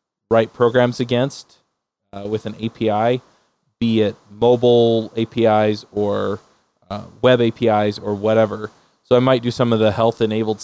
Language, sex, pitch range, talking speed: English, male, 105-120 Hz, 145 wpm